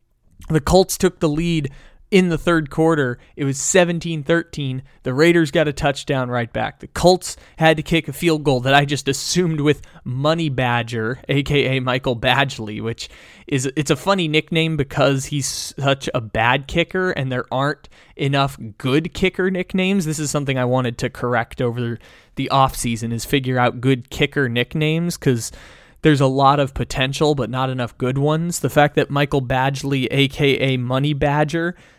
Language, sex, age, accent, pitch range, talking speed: English, male, 20-39, American, 130-160 Hz, 170 wpm